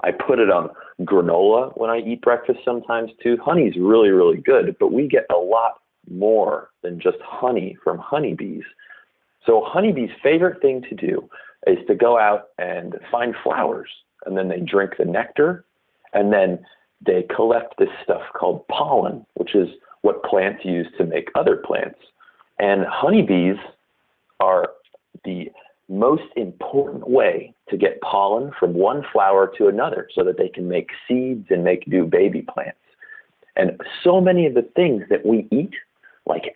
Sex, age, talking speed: male, 40-59, 160 wpm